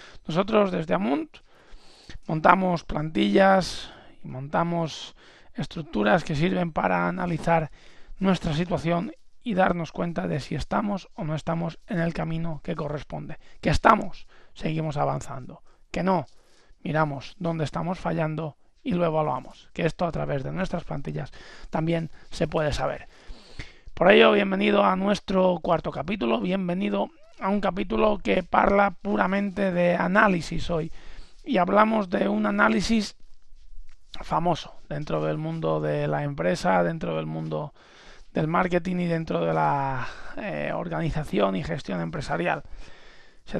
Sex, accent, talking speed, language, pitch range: male, Spanish, 135 wpm, Spanish, 160-195 Hz